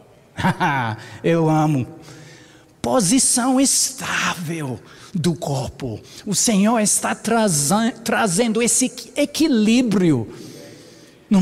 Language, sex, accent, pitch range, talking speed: Portuguese, male, Brazilian, 140-205 Hz, 70 wpm